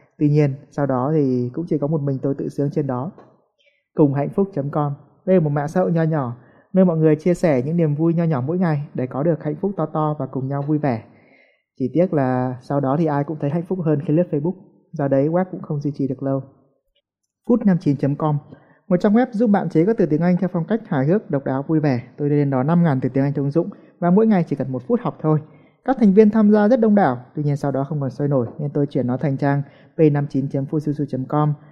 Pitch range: 140-175 Hz